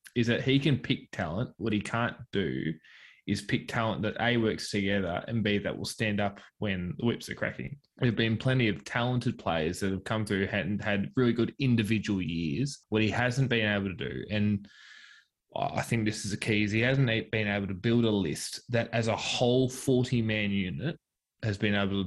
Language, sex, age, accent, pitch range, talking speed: English, male, 20-39, Australian, 100-120 Hz, 210 wpm